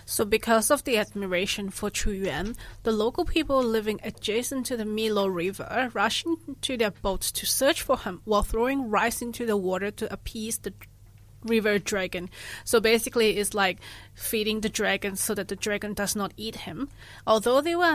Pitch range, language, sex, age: 195-245 Hz, Chinese, female, 20-39